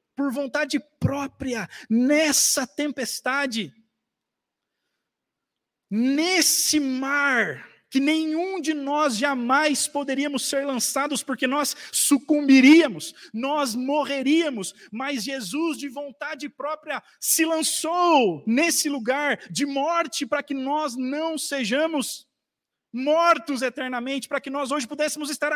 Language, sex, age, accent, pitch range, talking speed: Portuguese, male, 50-69, Brazilian, 255-290 Hz, 105 wpm